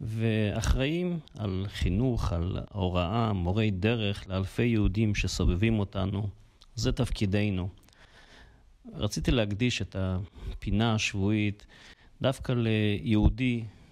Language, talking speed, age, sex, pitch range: Hebrew, 85 wpm, 40-59, male, 95-115 Hz